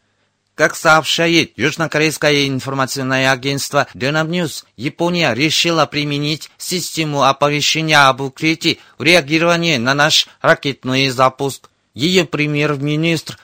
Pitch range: 135-160 Hz